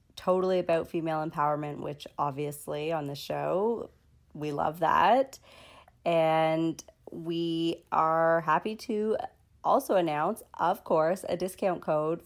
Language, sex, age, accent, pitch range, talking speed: English, female, 30-49, American, 150-175 Hz, 120 wpm